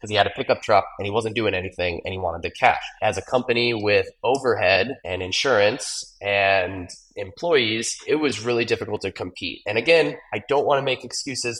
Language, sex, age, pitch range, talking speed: English, male, 20-39, 95-120 Hz, 195 wpm